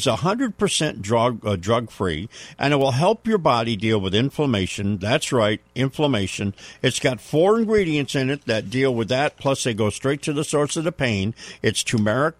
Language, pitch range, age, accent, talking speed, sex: English, 105-145 Hz, 50-69, American, 185 wpm, male